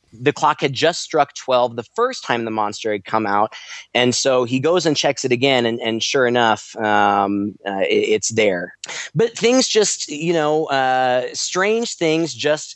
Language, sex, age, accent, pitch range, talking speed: English, male, 20-39, American, 115-150 Hz, 185 wpm